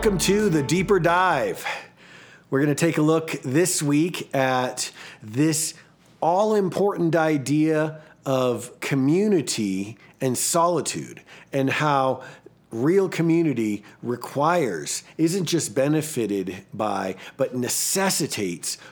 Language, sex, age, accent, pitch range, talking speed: English, male, 40-59, American, 135-180 Hz, 100 wpm